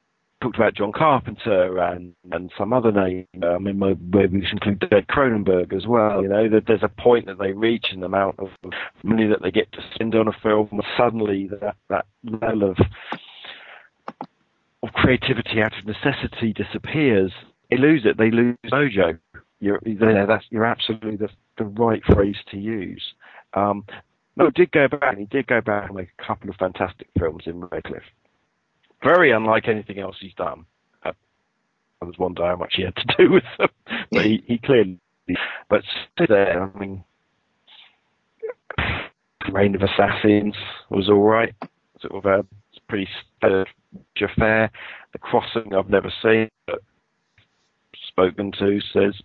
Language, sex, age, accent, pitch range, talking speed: English, male, 40-59, British, 95-110 Hz, 160 wpm